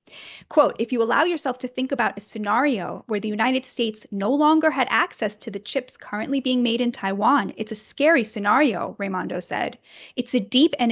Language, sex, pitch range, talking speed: English, female, 210-270 Hz, 200 wpm